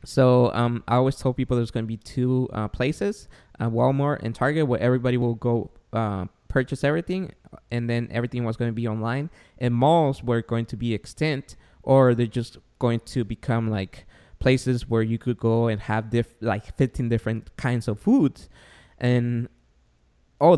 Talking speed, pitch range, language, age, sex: 180 wpm, 110-130 Hz, English, 20-39, male